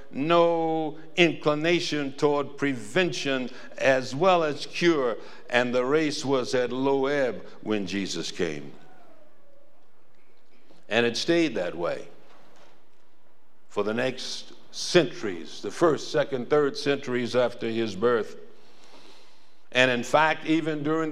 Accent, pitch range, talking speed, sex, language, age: American, 125-160 Hz, 115 wpm, male, English, 60-79